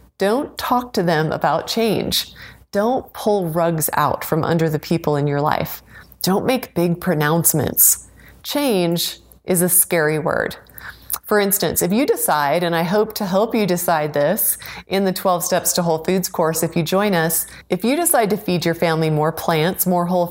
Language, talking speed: English, 185 wpm